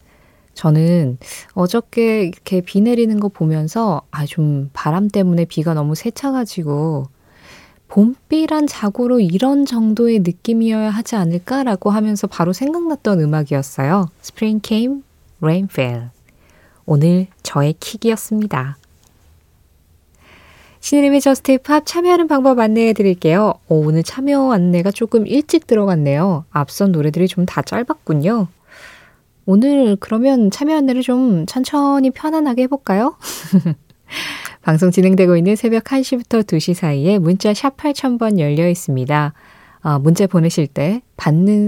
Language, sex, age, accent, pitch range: Korean, female, 20-39, native, 155-230 Hz